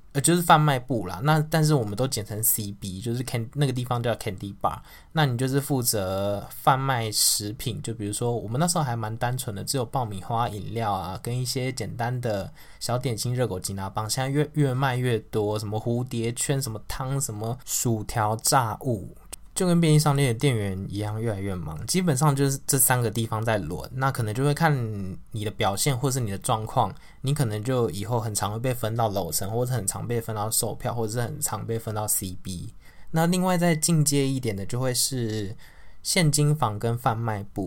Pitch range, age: 105-140 Hz, 20-39